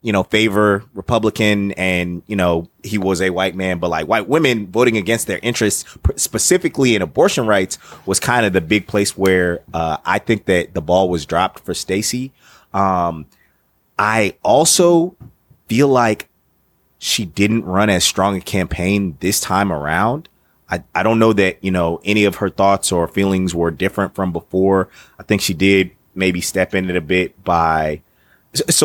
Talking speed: 175 wpm